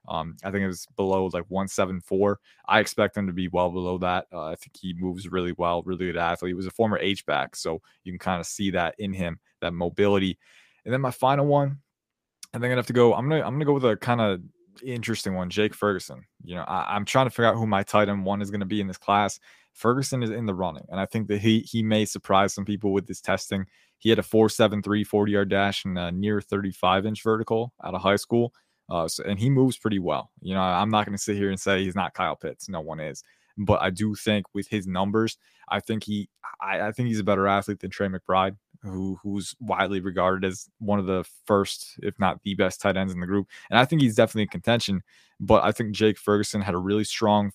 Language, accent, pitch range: English, American, 95-110 Hz